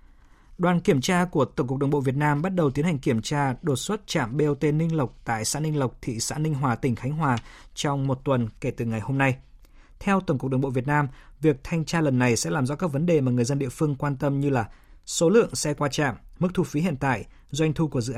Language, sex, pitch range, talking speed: Vietnamese, male, 130-160 Hz, 270 wpm